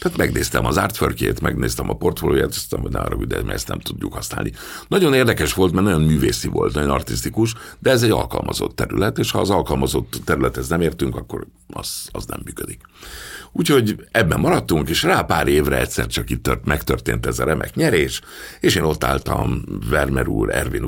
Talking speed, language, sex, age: 190 wpm, Hungarian, male, 60-79